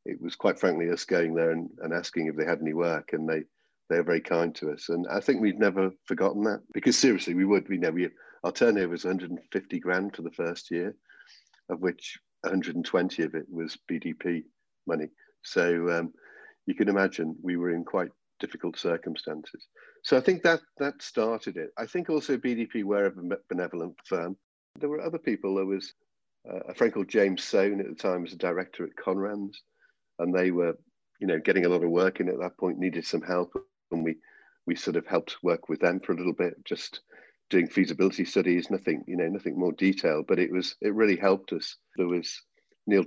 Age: 50-69